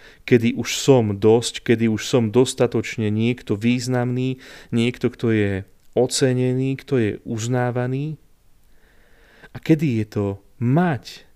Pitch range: 105-135 Hz